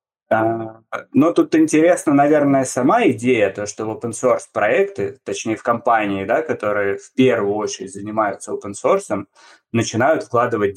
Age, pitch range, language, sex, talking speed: 20-39, 115-150 Hz, Russian, male, 140 wpm